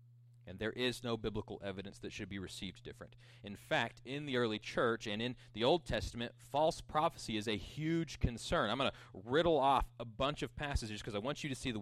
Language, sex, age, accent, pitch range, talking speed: English, male, 30-49, American, 115-150 Hz, 225 wpm